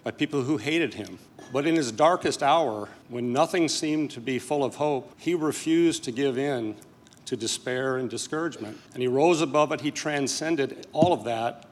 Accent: American